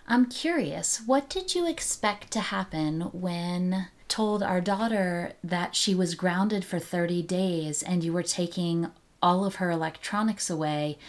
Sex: female